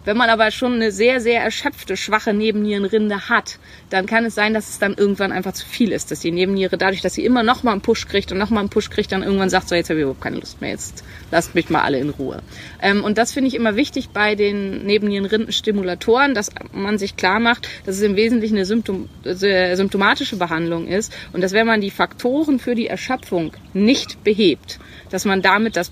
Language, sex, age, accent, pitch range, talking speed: German, female, 30-49, German, 195-255 Hz, 225 wpm